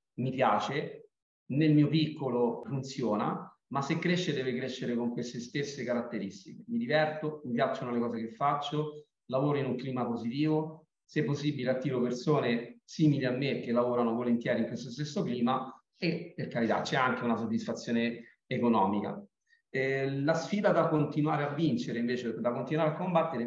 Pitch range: 120-150 Hz